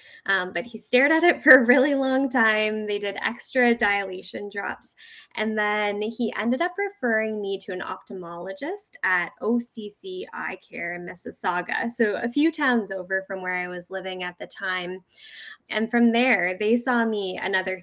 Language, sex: English, female